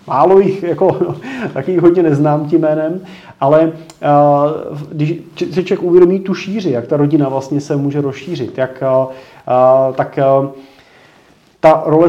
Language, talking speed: Czech, 160 wpm